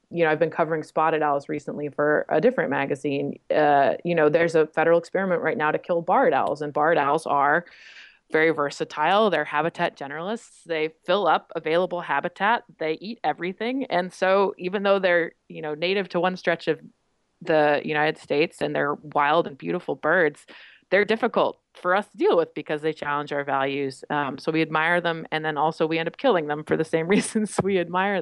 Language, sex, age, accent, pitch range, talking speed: English, female, 20-39, American, 155-190 Hz, 200 wpm